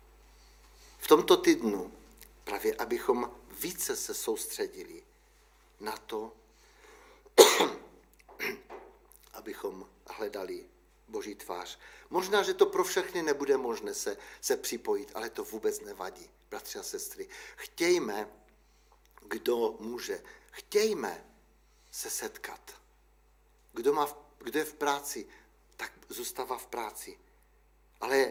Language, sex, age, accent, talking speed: Czech, male, 50-69, native, 105 wpm